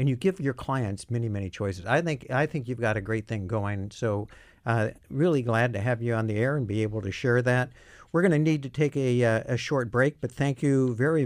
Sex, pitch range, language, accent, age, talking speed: male, 110-135 Hz, English, American, 60-79, 255 wpm